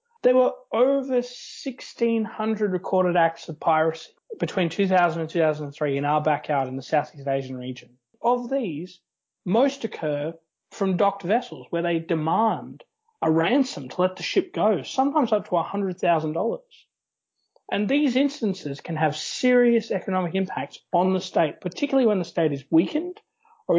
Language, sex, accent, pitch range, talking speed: English, male, Australian, 160-230 Hz, 150 wpm